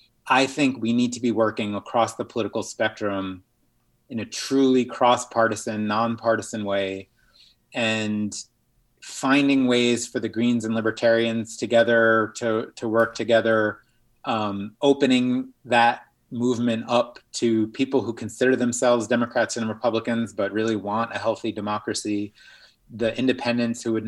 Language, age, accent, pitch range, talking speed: English, 30-49, American, 110-120 Hz, 130 wpm